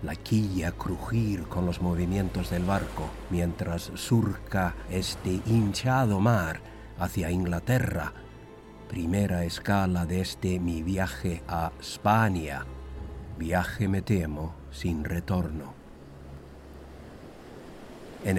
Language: Spanish